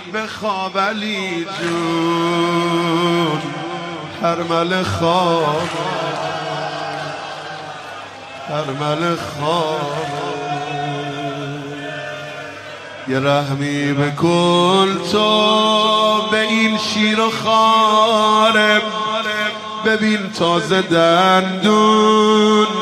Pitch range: 170-215 Hz